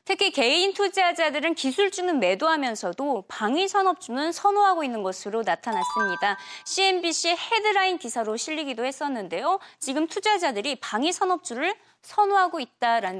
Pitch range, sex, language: 235-365 Hz, female, Korean